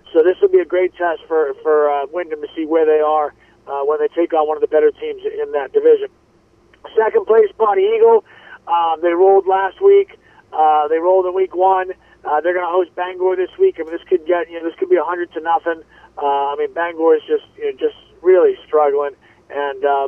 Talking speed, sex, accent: 235 wpm, male, American